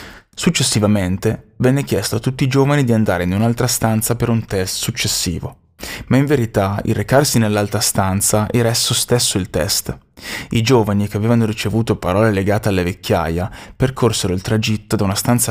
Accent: native